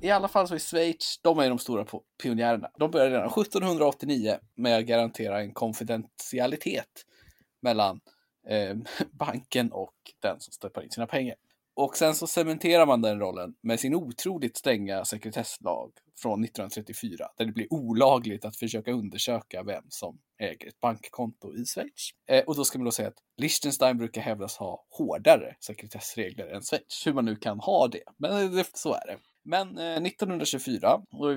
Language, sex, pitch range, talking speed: Swedish, male, 115-155 Hz, 165 wpm